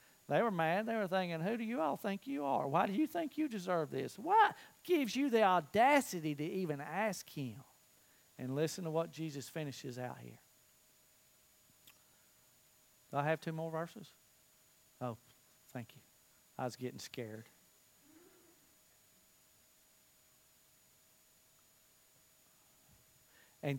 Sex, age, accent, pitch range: male, 50-69, American, 130-165 Hz